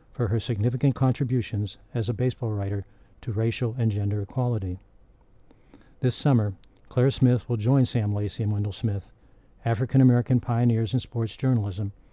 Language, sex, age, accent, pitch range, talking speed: English, male, 50-69, American, 105-125 Hz, 150 wpm